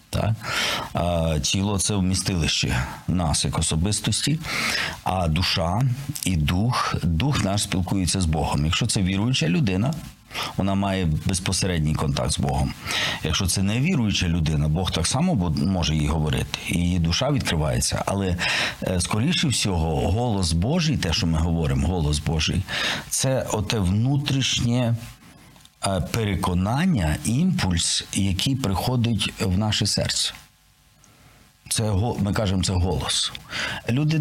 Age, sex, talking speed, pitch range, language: 50-69, male, 115 wpm, 90-120 Hz, Ukrainian